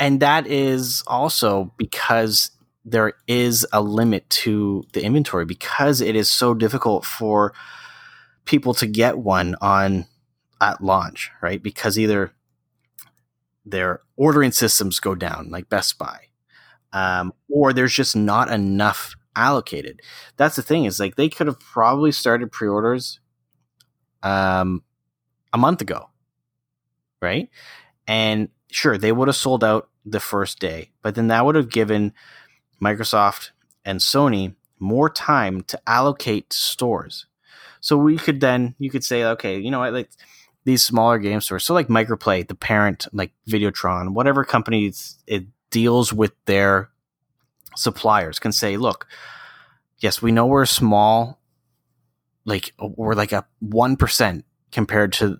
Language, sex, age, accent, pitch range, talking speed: English, male, 30-49, American, 100-125 Hz, 140 wpm